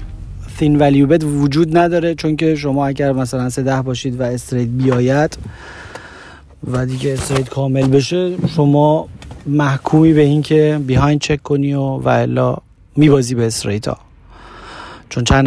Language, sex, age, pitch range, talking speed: Persian, male, 30-49, 120-150 Hz, 130 wpm